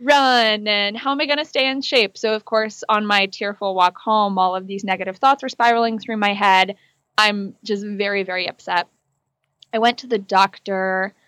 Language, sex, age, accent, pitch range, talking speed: English, female, 20-39, American, 190-225 Hz, 195 wpm